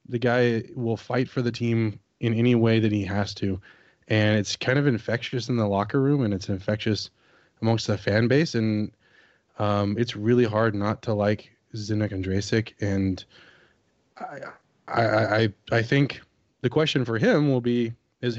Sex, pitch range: male, 105-125 Hz